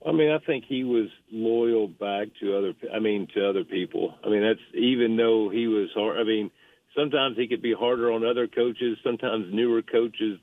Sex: male